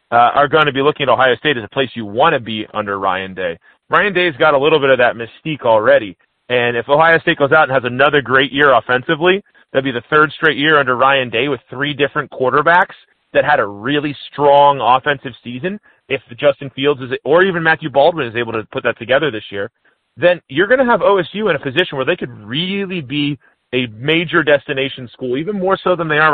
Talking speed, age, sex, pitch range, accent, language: 235 wpm, 30-49, male, 120-155 Hz, American, English